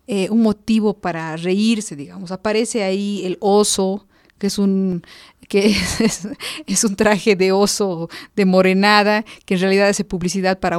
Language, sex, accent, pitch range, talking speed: Spanish, female, Mexican, 180-215 Hz, 155 wpm